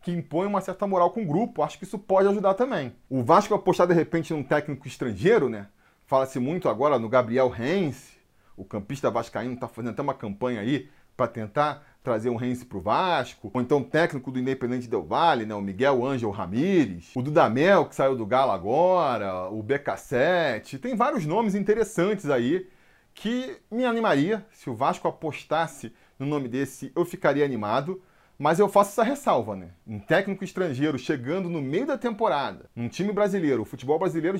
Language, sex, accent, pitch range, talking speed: Portuguese, male, Brazilian, 130-195 Hz, 185 wpm